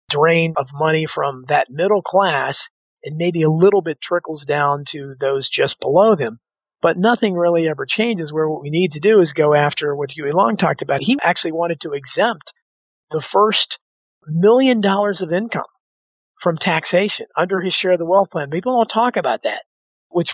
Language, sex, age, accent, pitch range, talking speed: English, male, 50-69, American, 155-190 Hz, 190 wpm